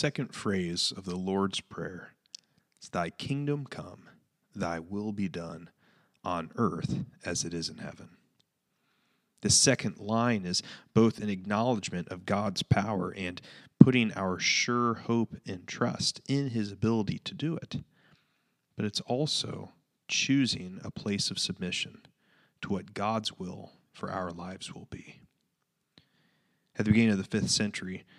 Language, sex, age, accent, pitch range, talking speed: English, male, 30-49, American, 95-120 Hz, 145 wpm